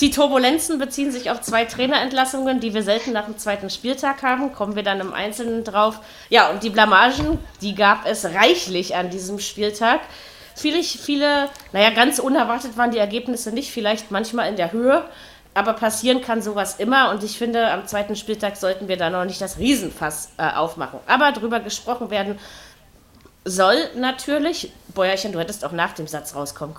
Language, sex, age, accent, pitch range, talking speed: German, female, 30-49, German, 200-255 Hz, 180 wpm